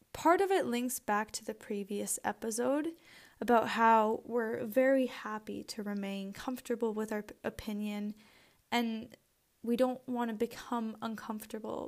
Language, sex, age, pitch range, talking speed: English, female, 10-29, 210-250 Hz, 135 wpm